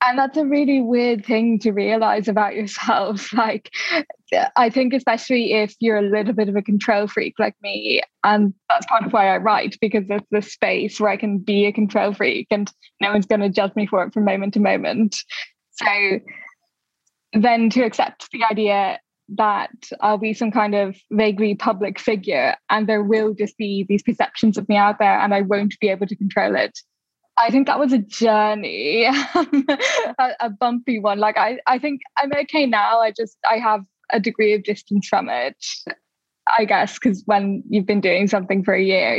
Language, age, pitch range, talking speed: English, 10-29, 205-245 Hz, 195 wpm